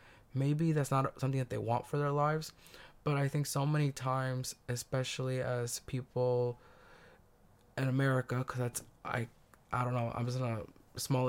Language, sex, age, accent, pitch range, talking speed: English, male, 20-39, American, 120-140 Hz, 165 wpm